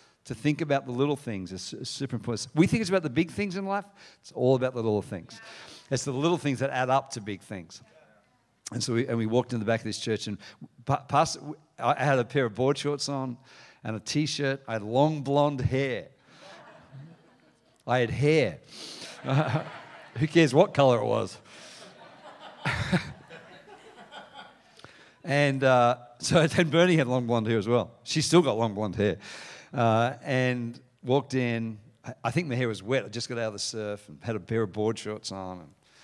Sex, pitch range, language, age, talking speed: male, 110-140 Hz, English, 50-69, 190 wpm